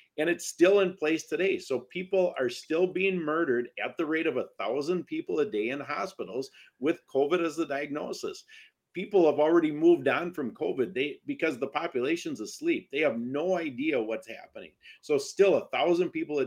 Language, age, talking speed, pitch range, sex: English, 50-69, 190 wpm, 125-190 Hz, male